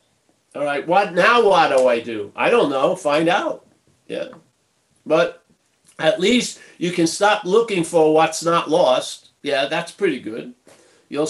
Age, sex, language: 50-69, male, English